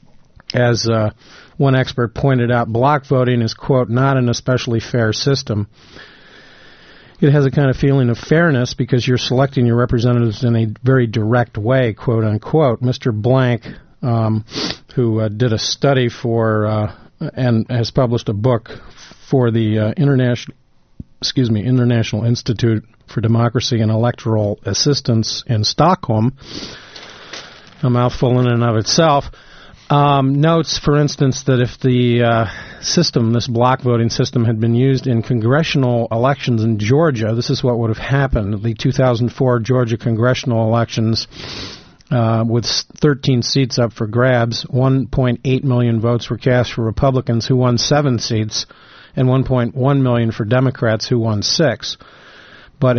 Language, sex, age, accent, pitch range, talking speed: English, male, 50-69, American, 115-130 Hz, 145 wpm